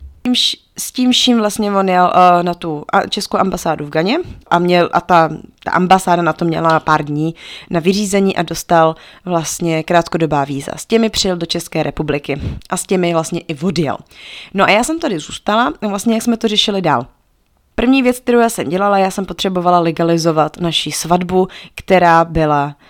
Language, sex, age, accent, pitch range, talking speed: Czech, female, 20-39, native, 165-205 Hz, 185 wpm